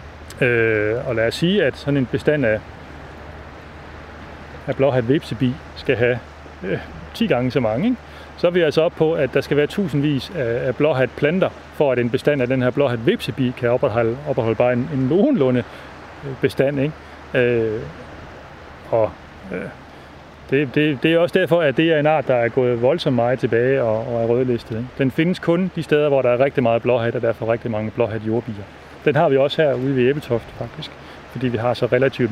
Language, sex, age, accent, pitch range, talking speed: Danish, male, 30-49, native, 115-145 Hz, 200 wpm